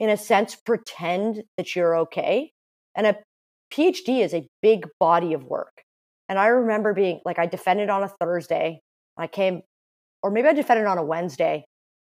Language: English